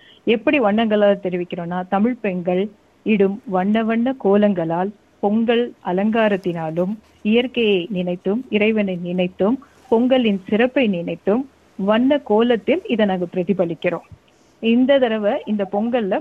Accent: native